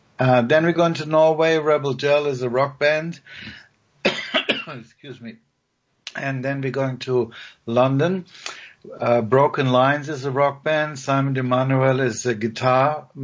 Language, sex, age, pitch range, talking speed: English, male, 60-79, 115-140 Hz, 150 wpm